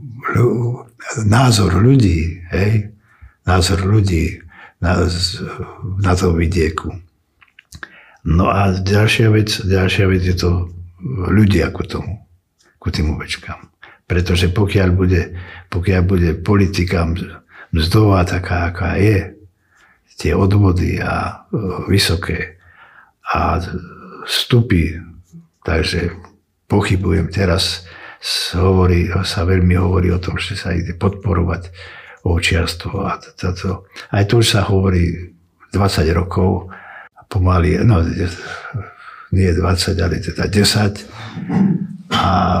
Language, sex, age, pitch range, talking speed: Slovak, male, 60-79, 90-100 Hz, 100 wpm